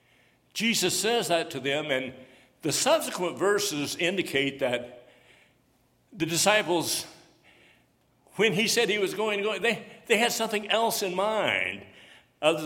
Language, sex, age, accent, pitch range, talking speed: English, male, 60-79, American, 125-190 Hz, 135 wpm